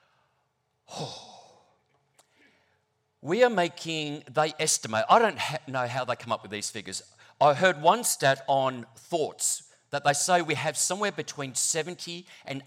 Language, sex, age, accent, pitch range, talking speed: English, male, 50-69, Australian, 120-165 Hz, 140 wpm